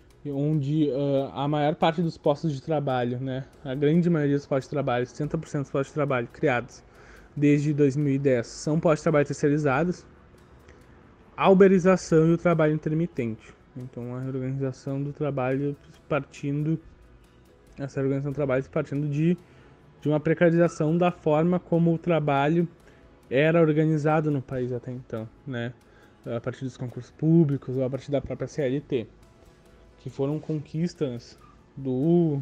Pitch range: 130-155 Hz